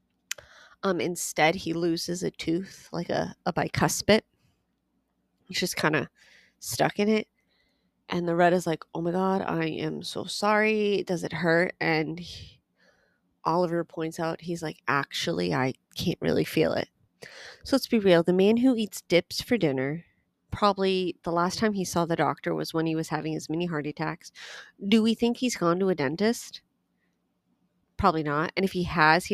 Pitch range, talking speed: 155-185 Hz, 180 wpm